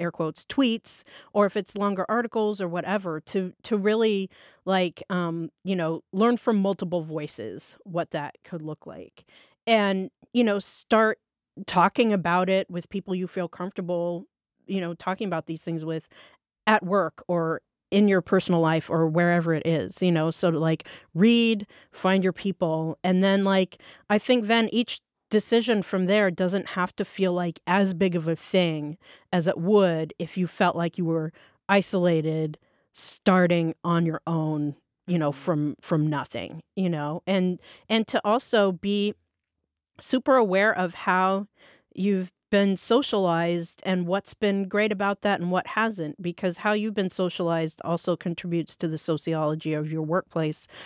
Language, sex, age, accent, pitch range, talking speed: English, female, 40-59, American, 165-200 Hz, 165 wpm